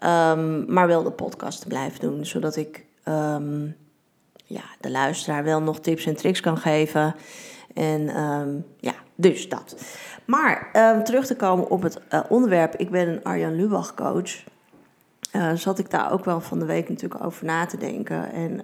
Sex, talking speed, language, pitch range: female, 175 wpm, Dutch, 160-190 Hz